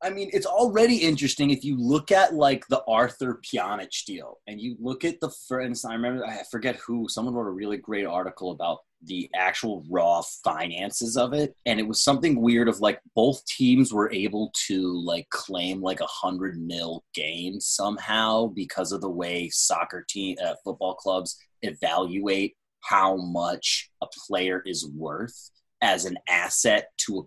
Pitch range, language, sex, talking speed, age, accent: 100-135 Hz, English, male, 175 wpm, 20-39, American